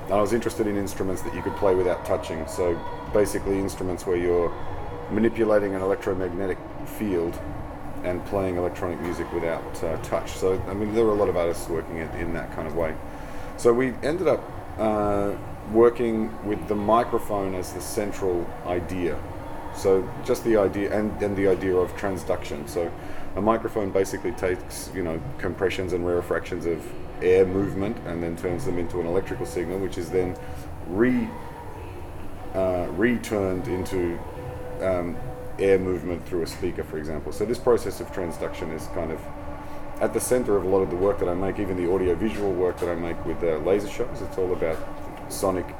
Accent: Australian